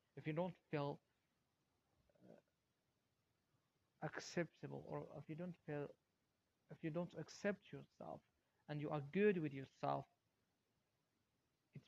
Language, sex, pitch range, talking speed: English, male, 145-165 Hz, 115 wpm